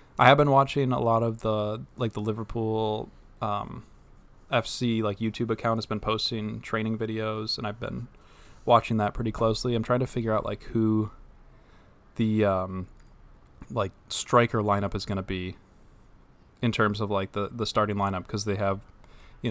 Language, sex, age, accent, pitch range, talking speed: English, male, 20-39, American, 100-110 Hz, 170 wpm